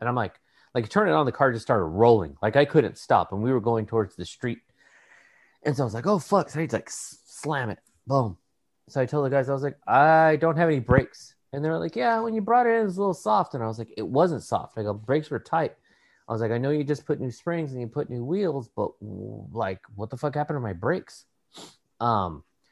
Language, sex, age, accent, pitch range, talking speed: English, male, 30-49, American, 110-150 Hz, 270 wpm